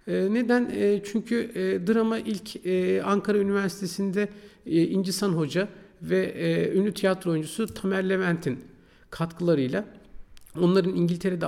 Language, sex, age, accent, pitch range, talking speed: Turkish, male, 50-69, native, 135-185 Hz, 95 wpm